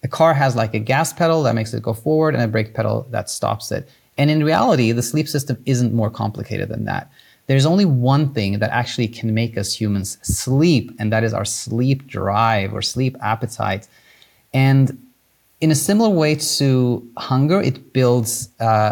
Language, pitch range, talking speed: English, 110-140 Hz, 190 wpm